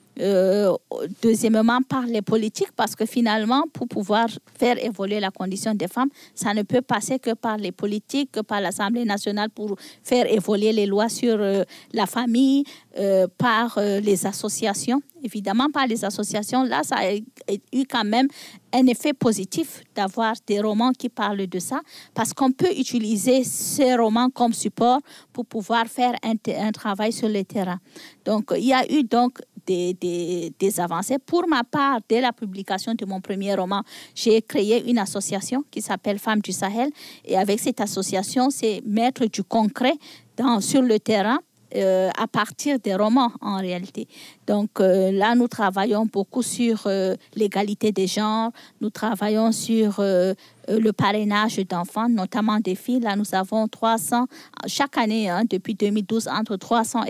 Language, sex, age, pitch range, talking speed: French, female, 40-59, 200-245 Hz, 165 wpm